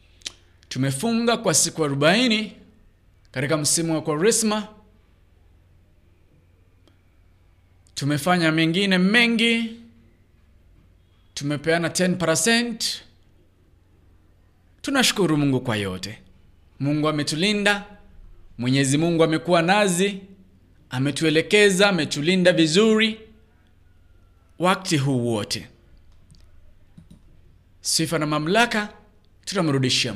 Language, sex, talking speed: English, male, 65 wpm